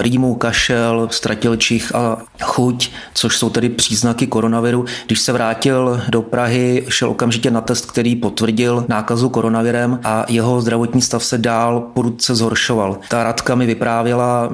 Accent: native